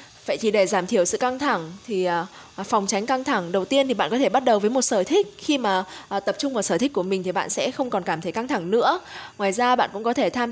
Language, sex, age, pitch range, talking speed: Vietnamese, female, 10-29, 190-255 Hz, 290 wpm